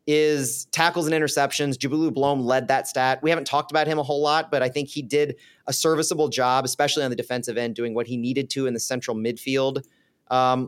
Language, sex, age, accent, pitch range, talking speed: English, male, 30-49, American, 130-155 Hz, 225 wpm